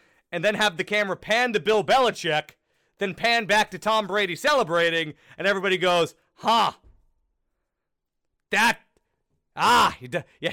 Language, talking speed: English, 135 wpm